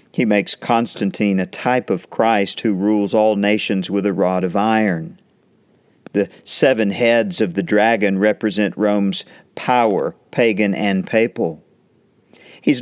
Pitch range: 100-120 Hz